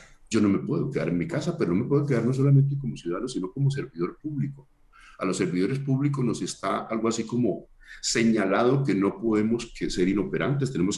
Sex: male